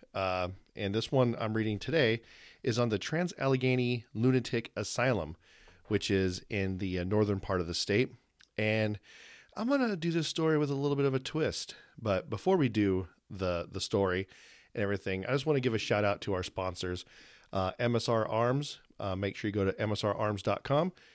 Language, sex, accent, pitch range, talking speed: English, male, American, 100-135 Hz, 190 wpm